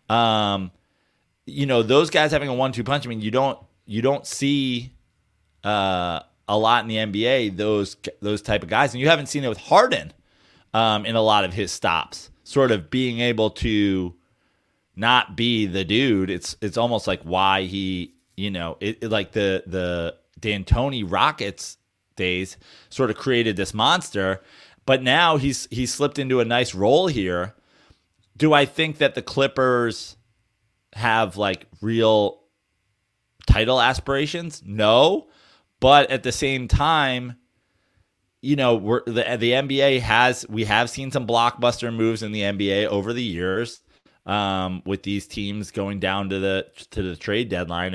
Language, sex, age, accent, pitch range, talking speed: English, male, 30-49, American, 95-125 Hz, 165 wpm